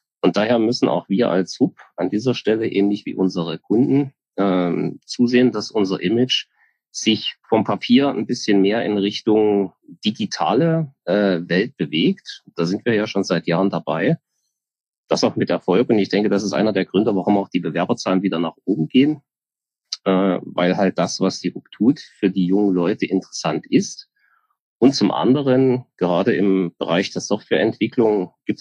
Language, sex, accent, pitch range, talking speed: German, male, German, 95-115 Hz, 170 wpm